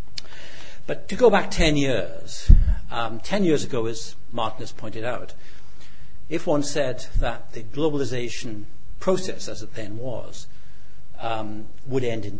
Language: English